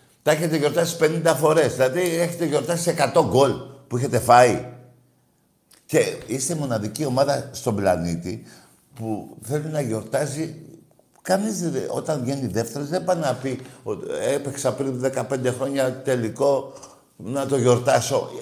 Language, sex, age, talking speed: Greek, male, 60-79, 135 wpm